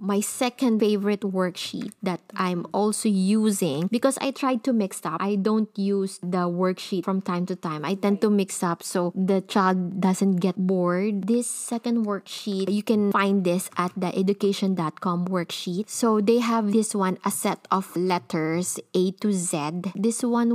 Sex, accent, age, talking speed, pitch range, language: female, Filipino, 20-39, 170 wpm, 185-215 Hz, English